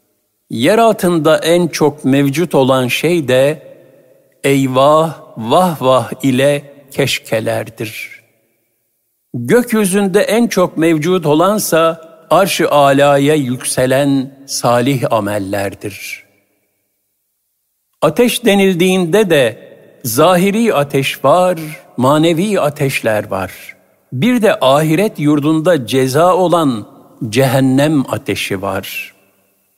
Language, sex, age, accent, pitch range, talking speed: Turkish, male, 60-79, native, 120-165 Hz, 85 wpm